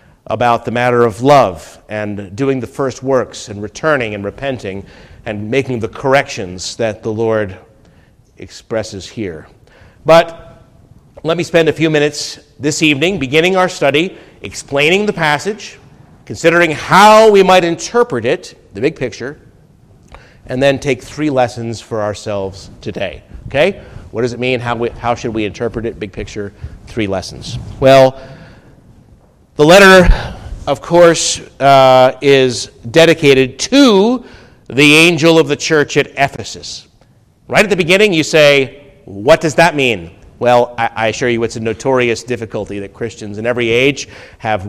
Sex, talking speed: male, 150 wpm